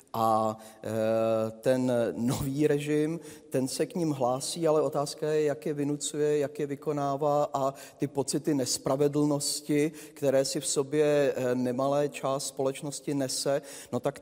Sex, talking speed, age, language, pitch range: male, 135 wpm, 30-49, Czech, 120-145 Hz